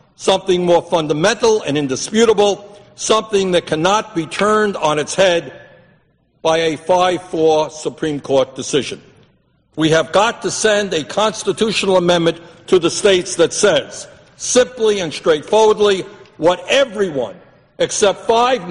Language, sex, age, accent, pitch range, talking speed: English, male, 60-79, American, 175-215 Hz, 125 wpm